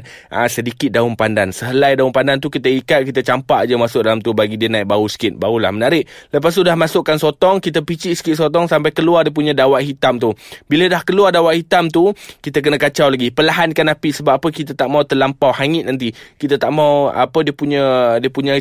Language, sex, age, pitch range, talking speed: Malay, male, 20-39, 135-160 Hz, 215 wpm